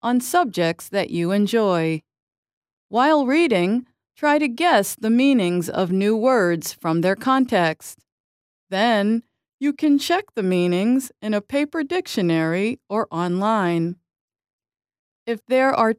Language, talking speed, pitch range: English, 125 wpm, 175-260 Hz